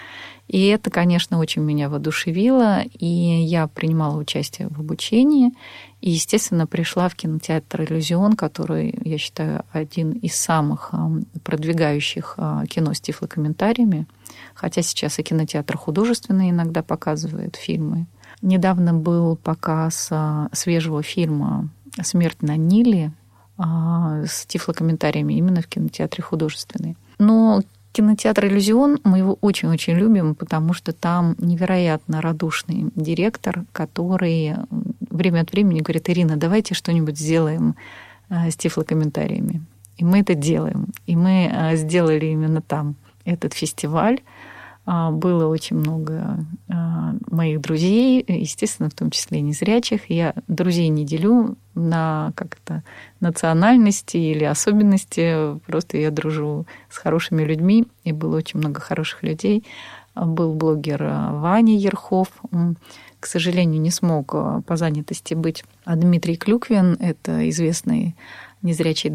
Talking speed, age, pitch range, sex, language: 115 wpm, 30-49, 155-190 Hz, female, Russian